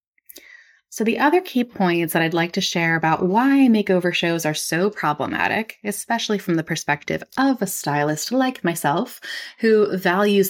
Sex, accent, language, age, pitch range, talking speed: female, American, English, 20-39, 175-240 Hz, 160 wpm